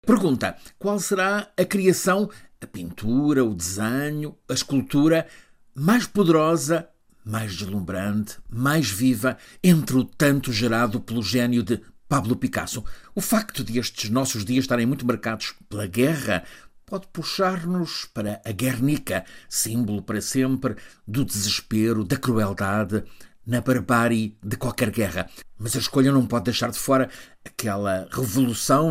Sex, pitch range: male, 105-135 Hz